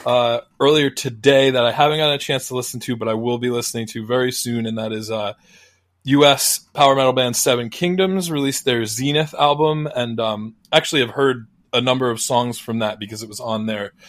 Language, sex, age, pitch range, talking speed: English, male, 20-39, 110-130 Hz, 210 wpm